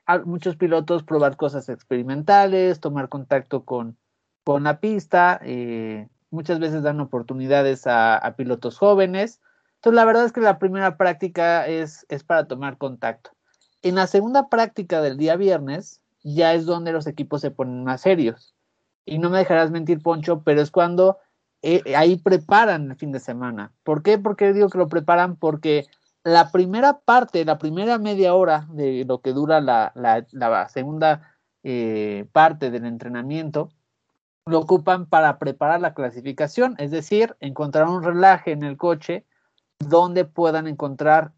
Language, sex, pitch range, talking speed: Spanish, male, 140-185 Hz, 160 wpm